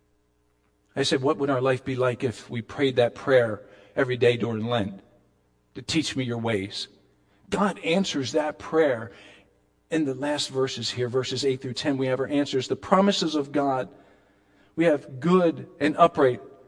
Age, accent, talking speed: 50-69, American, 175 wpm